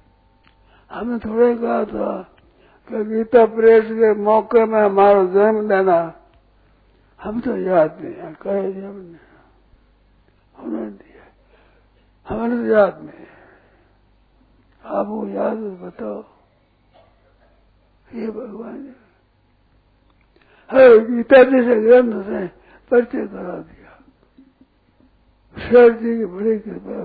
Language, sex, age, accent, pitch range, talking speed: Hindi, male, 60-79, native, 180-240 Hz, 105 wpm